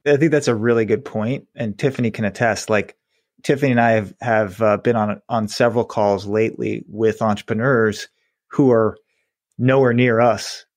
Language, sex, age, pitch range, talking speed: English, male, 30-49, 105-125 Hz, 175 wpm